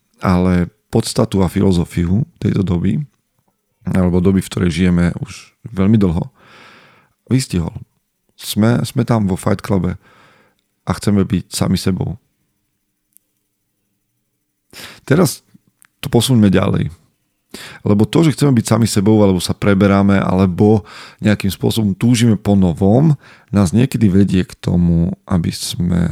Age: 40-59